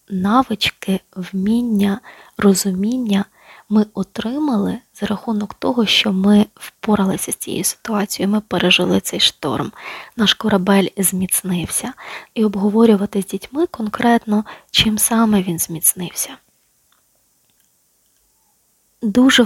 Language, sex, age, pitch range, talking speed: Ukrainian, female, 20-39, 195-230 Hz, 95 wpm